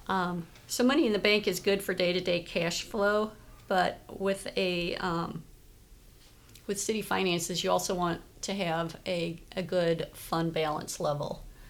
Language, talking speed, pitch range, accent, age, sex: English, 155 wpm, 155-180 Hz, American, 40-59, female